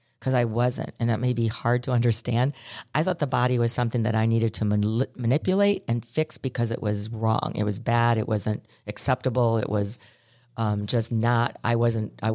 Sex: female